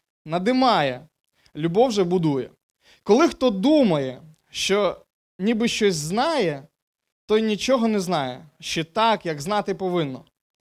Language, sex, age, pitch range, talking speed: Ukrainian, male, 20-39, 165-215 Hz, 110 wpm